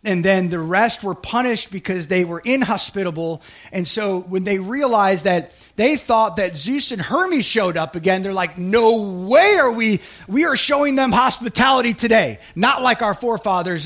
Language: English